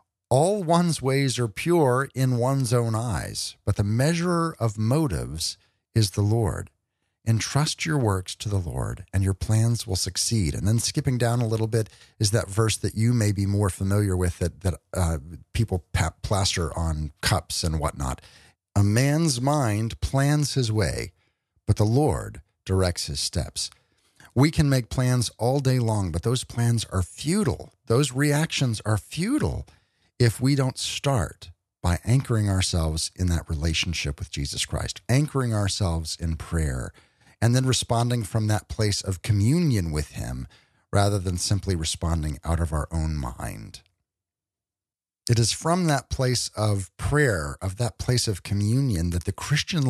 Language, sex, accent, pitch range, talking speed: English, male, American, 90-125 Hz, 160 wpm